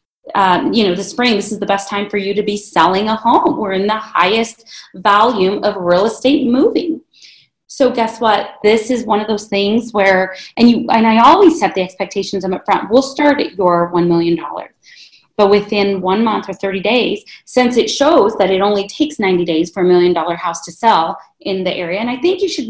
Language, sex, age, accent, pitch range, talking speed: English, female, 30-49, American, 190-230 Hz, 215 wpm